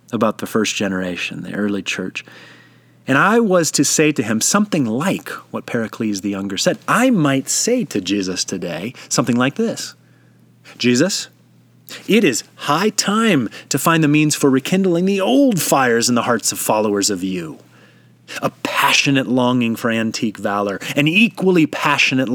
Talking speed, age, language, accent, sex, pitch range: 160 wpm, 30-49, English, American, male, 100-155 Hz